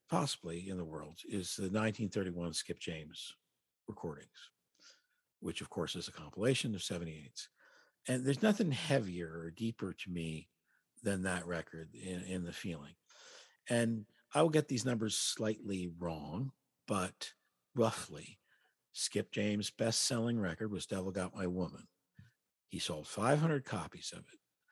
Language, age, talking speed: English, 50-69, 140 wpm